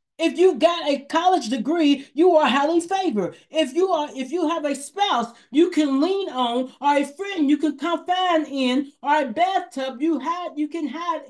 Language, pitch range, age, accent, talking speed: English, 265-330 Hz, 40-59, American, 195 wpm